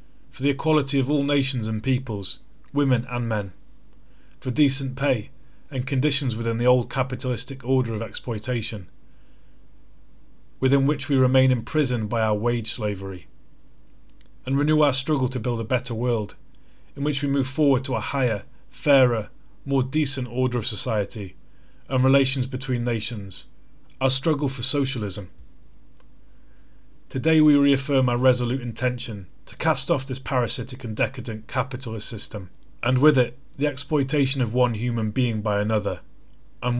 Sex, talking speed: male, 145 wpm